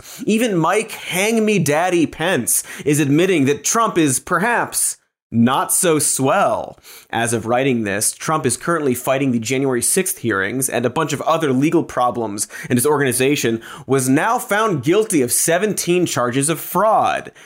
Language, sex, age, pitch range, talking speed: English, male, 30-49, 125-170 Hz, 160 wpm